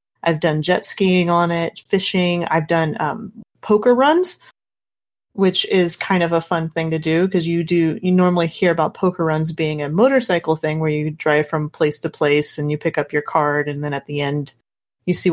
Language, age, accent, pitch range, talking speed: English, 30-49, American, 160-195 Hz, 210 wpm